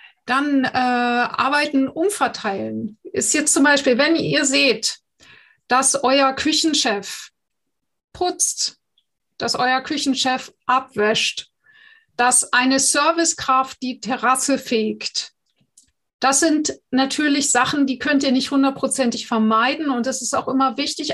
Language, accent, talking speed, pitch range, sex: German, German, 115 wpm, 240-285 Hz, female